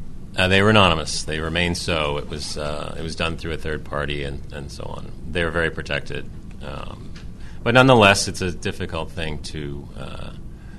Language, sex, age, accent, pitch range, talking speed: English, male, 30-49, American, 80-95 Hz, 190 wpm